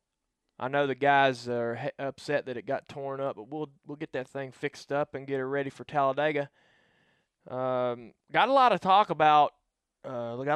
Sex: male